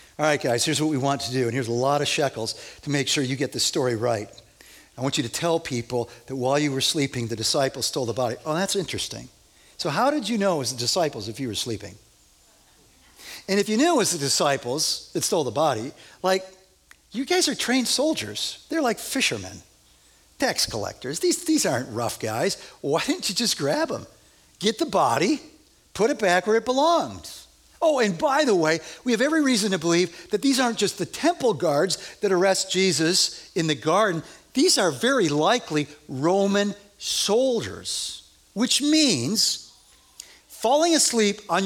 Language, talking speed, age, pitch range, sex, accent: English, 195 wpm, 50-69, 140-235 Hz, male, American